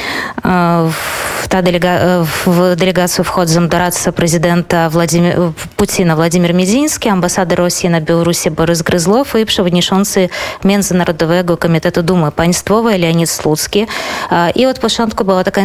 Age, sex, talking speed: 20-39, female, 125 wpm